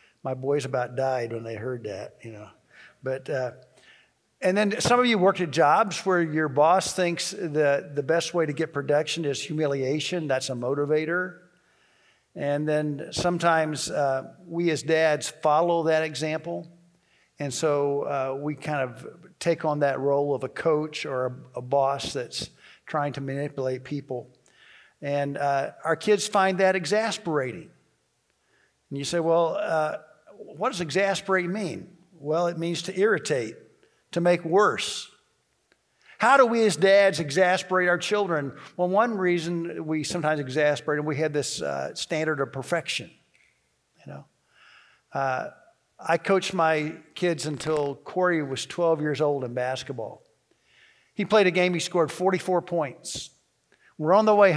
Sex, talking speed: male, 155 wpm